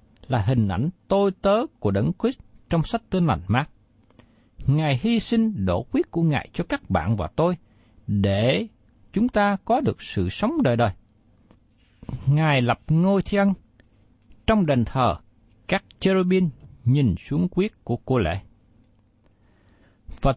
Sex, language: male, Vietnamese